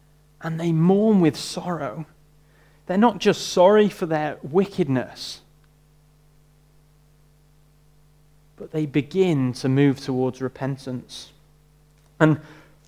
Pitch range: 150-185 Hz